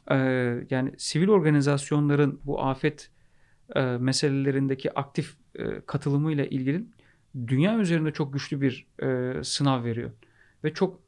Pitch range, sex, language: 130-165 Hz, male, Turkish